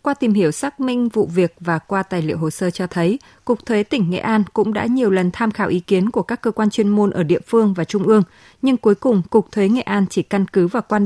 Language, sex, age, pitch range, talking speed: Vietnamese, female, 20-39, 185-225 Hz, 280 wpm